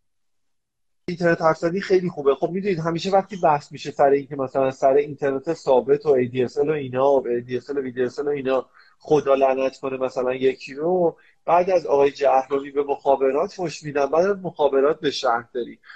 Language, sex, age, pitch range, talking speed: Persian, male, 30-49, 135-175 Hz, 190 wpm